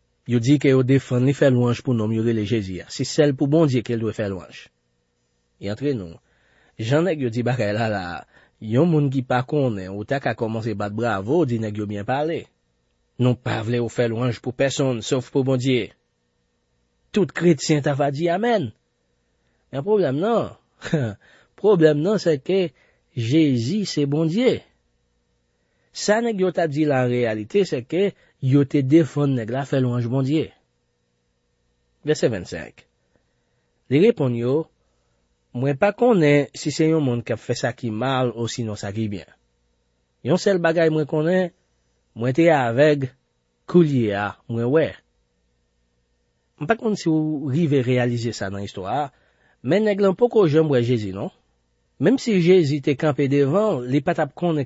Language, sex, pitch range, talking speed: French, male, 90-150 Hz, 155 wpm